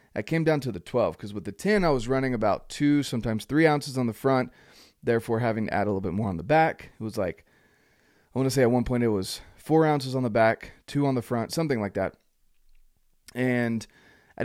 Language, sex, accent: English, male, American